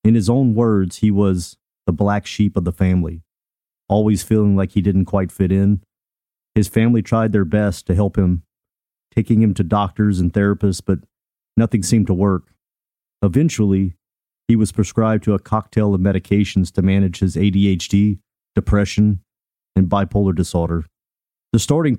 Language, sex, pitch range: English, male, 95-110 Hz